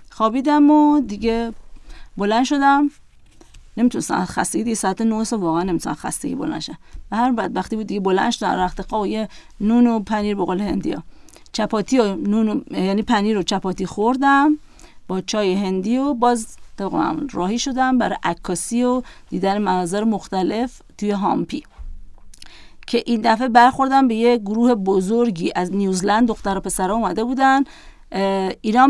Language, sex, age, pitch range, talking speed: Persian, female, 40-59, 195-260 Hz, 145 wpm